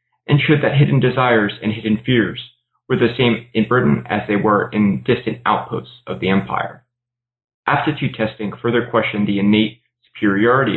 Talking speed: 160 wpm